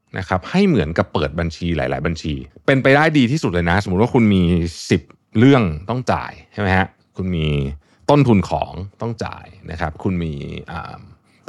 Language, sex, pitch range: Thai, male, 85-115 Hz